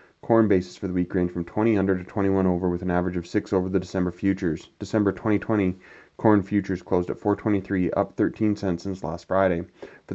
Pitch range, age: 95-105 Hz, 30-49